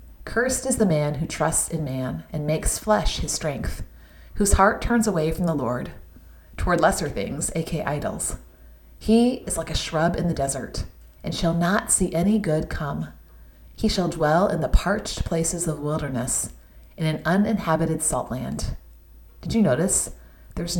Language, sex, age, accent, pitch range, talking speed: English, female, 30-49, American, 135-195 Hz, 165 wpm